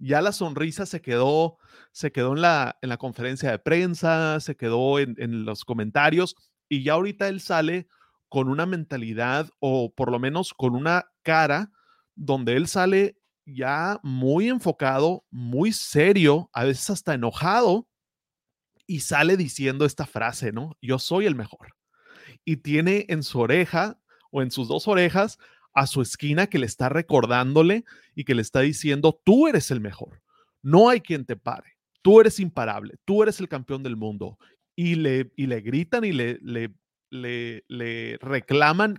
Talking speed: 165 wpm